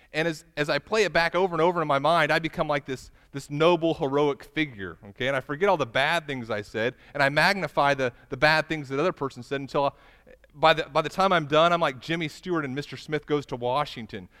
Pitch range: 115-160 Hz